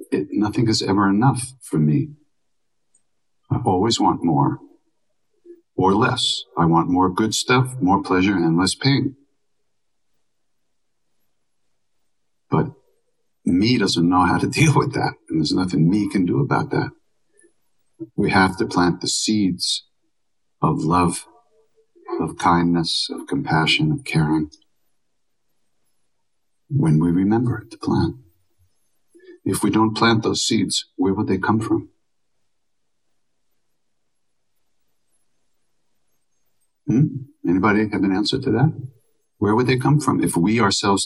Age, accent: 60-79, American